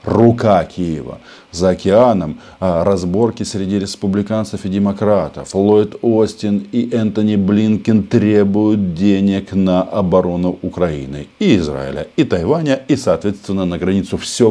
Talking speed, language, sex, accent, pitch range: 115 wpm, Russian, male, native, 85-110 Hz